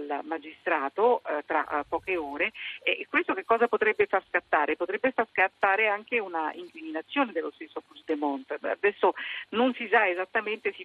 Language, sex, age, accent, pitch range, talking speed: Italian, female, 50-69, native, 165-235 Hz, 155 wpm